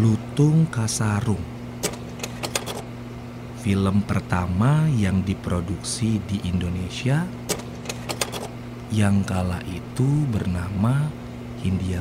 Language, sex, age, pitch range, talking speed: Indonesian, male, 30-49, 90-120 Hz, 65 wpm